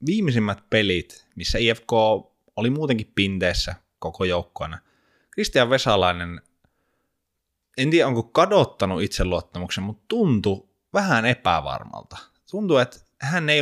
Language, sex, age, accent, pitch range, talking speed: Finnish, male, 20-39, native, 85-110 Hz, 105 wpm